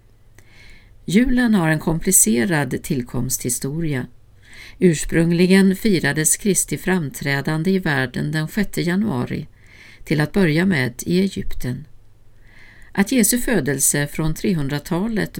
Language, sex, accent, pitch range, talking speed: Swedish, female, native, 120-190 Hz, 95 wpm